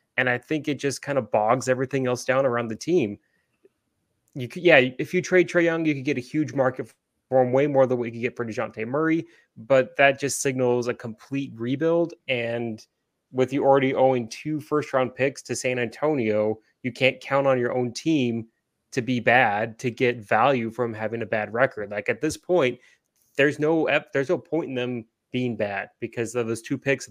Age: 20-39